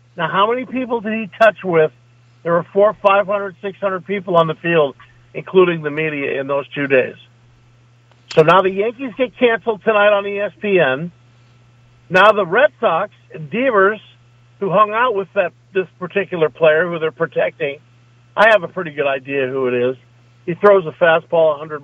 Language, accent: English, American